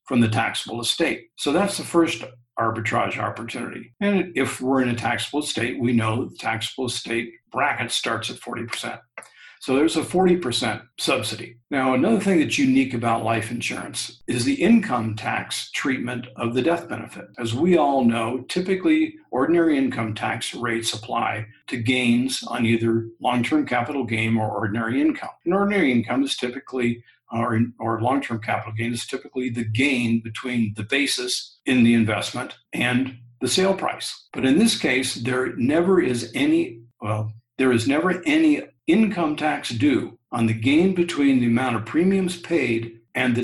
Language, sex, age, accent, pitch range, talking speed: English, male, 50-69, American, 115-160 Hz, 165 wpm